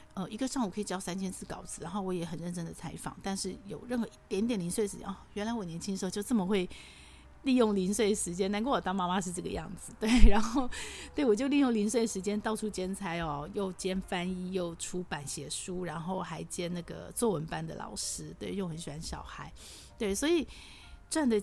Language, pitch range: Chinese, 170-210 Hz